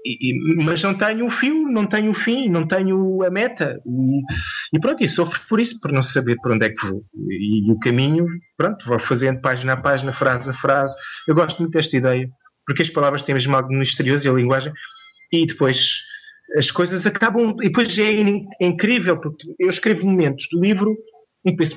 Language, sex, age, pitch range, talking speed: Portuguese, male, 20-39, 140-200 Hz, 210 wpm